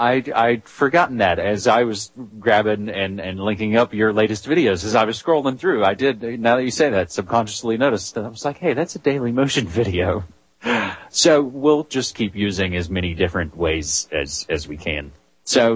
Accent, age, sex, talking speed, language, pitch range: American, 30-49, male, 200 wpm, English, 95-130 Hz